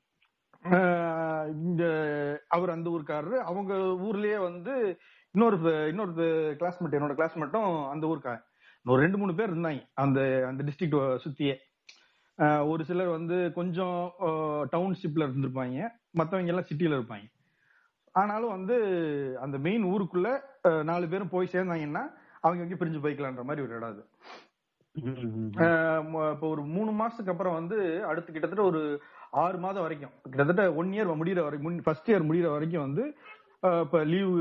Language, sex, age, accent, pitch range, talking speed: Tamil, male, 40-59, native, 145-175 Hz, 115 wpm